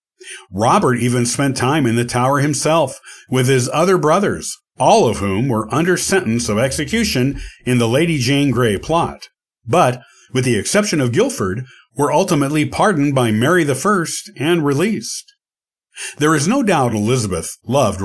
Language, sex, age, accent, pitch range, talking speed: English, male, 50-69, American, 120-165 Hz, 155 wpm